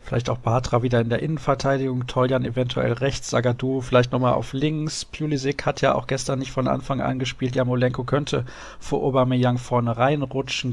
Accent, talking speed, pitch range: German, 175 wpm, 120-140 Hz